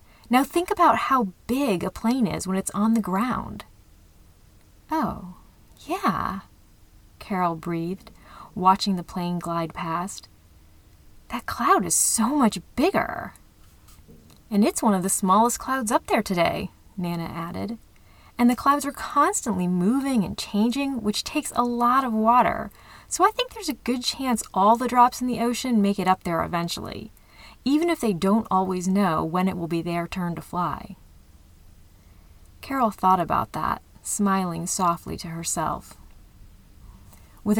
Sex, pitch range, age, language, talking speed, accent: female, 170-230 Hz, 30-49, English, 150 wpm, American